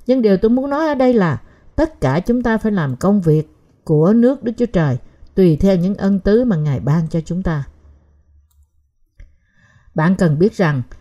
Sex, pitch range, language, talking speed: female, 155-230 Hz, Vietnamese, 195 wpm